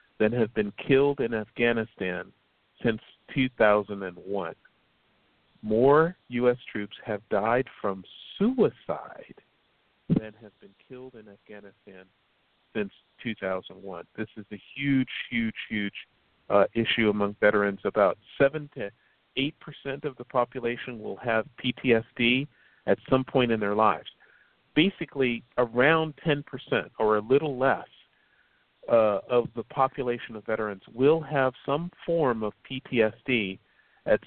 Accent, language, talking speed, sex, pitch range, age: American, English, 120 wpm, male, 110-140 Hz, 50-69